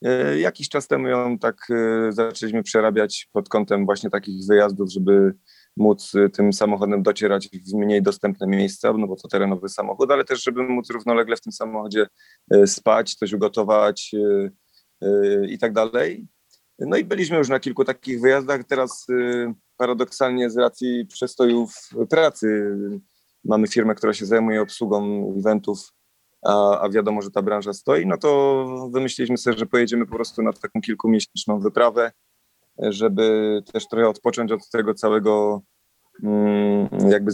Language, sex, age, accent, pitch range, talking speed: Polish, male, 30-49, native, 100-120 Hz, 140 wpm